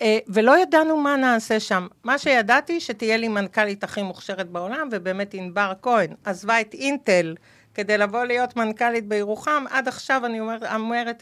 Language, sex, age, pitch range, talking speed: Hebrew, female, 50-69, 200-255 Hz, 155 wpm